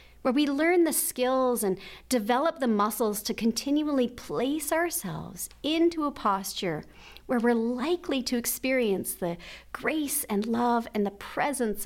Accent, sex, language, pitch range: American, female, English, 195-275 Hz